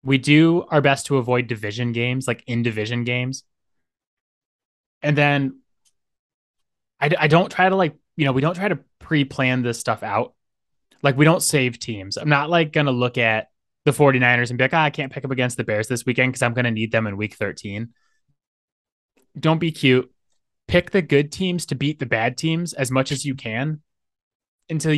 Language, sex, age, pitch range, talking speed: English, male, 20-39, 115-145 Hz, 195 wpm